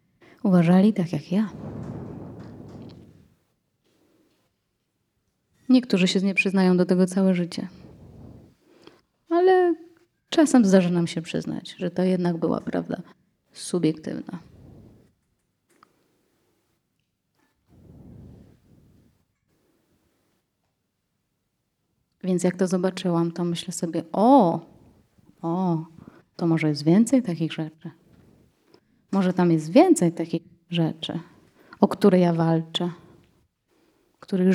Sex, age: female, 30-49